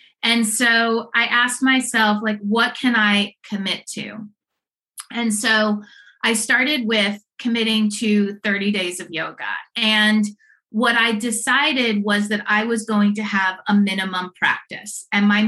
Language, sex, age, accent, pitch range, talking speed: English, female, 30-49, American, 205-235 Hz, 145 wpm